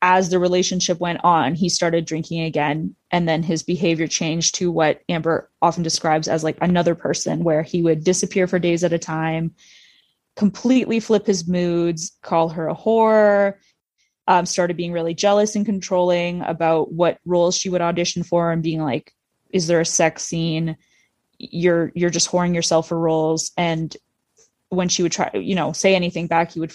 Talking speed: 180 wpm